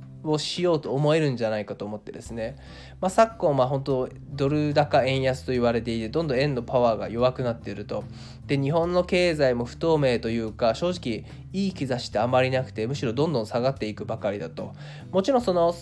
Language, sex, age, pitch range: Japanese, male, 20-39, 115-165 Hz